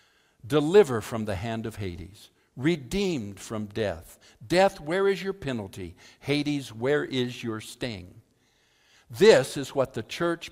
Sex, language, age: male, English, 60-79